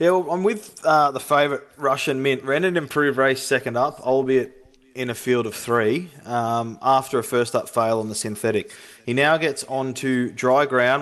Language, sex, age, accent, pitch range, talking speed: English, male, 20-39, Australian, 115-135 Hz, 195 wpm